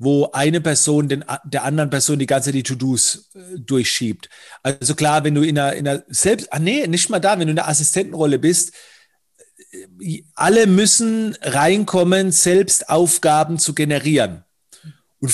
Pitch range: 150-175 Hz